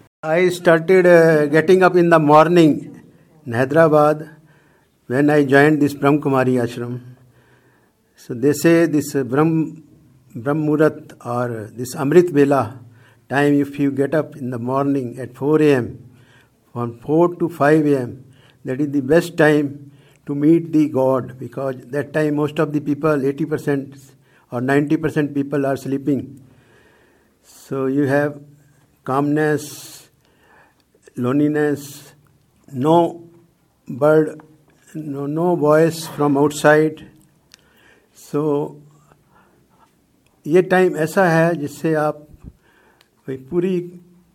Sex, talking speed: male, 120 wpm